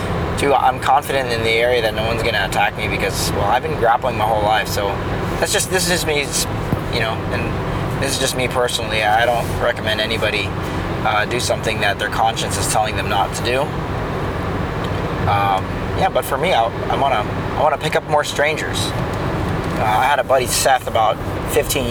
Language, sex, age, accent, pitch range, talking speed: English, male, 20-39, American, 105-130 Hz, 200 wpm